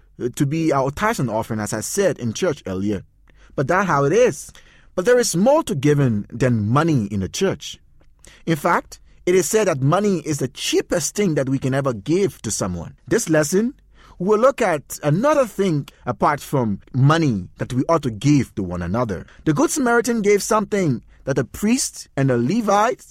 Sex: male